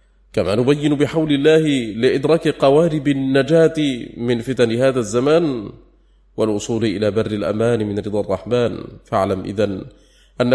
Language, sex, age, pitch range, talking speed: English, male, 30-49, 110-140 Hz, 120 wpm